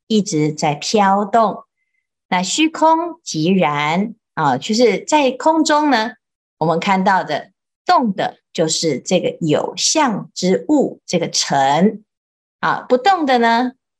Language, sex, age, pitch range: Chinese, female, 50-69, 165-245 Hz